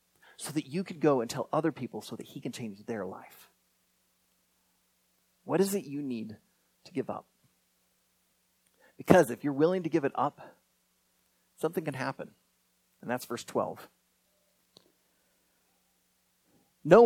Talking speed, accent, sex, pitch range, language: 140 wpm, American, male, 150-230 Hz, English